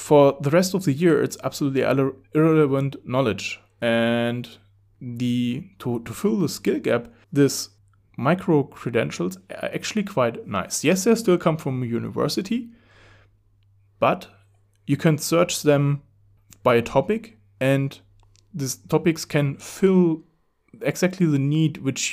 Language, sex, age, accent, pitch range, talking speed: English, male, 30-49, German, 110-150 Hz, 135 wpm